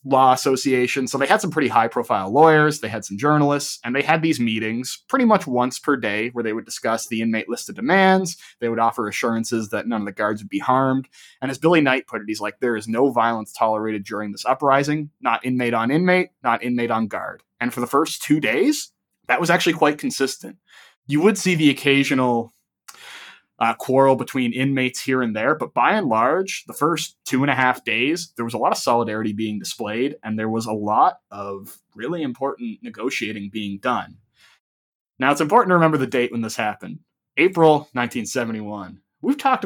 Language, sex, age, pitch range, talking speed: English, male, 20-39, 110-145 Hz, 205 wpm